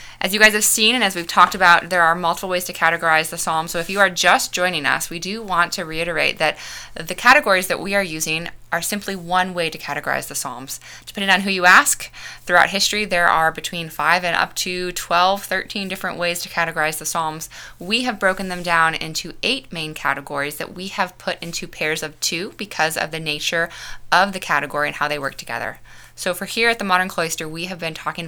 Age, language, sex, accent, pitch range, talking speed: 20-39, English, female, American, 155-190 Hz, 225 wpm